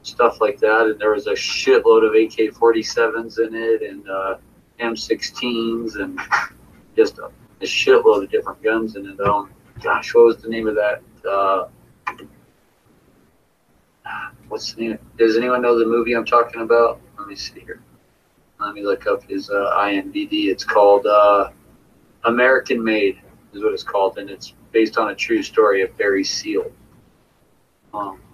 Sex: male